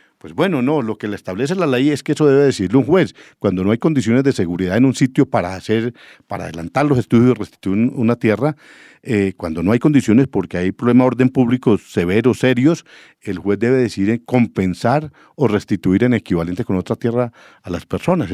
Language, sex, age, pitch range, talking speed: English, male, 50-69, 110-145 Hz, 210 wpm